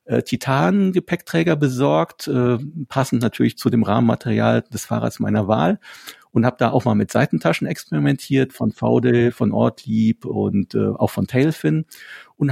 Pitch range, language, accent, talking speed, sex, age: 115-145 Hz, German, German, 140 wpm, male, 50-69